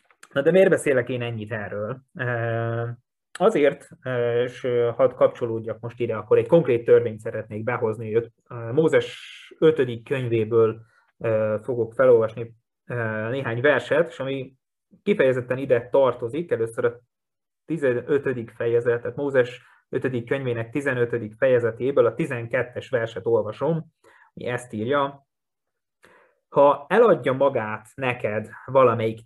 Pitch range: 120-195 Hz